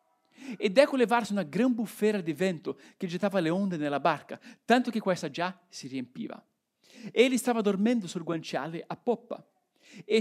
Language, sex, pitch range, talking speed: Italian, male, 200-260 Hz, 165 wpm